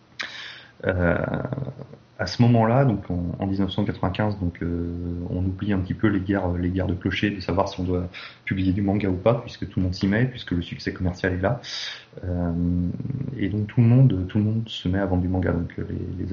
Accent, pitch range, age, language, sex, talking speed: French, 90-115 Hz, 30-49, French, male, 225 wpm